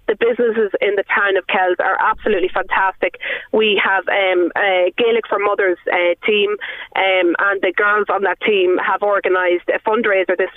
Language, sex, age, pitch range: English, female, 20-39, 180-235 Hz